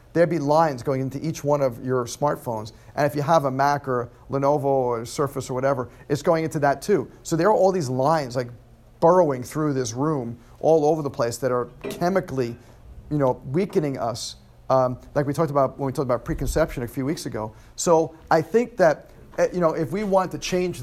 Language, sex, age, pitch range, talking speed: English, male, 40-59, 125-160 Hz, 215 wpm